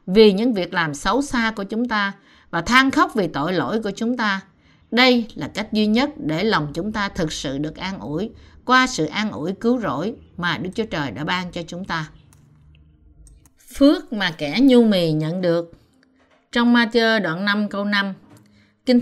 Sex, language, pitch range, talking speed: female, Vietnamese, 170-260 Hz, 190 wpm